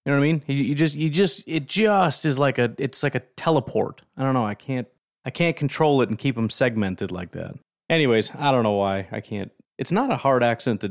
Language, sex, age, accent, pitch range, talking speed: English, male, 30-49, American, 115-150 Hz, 255 wpm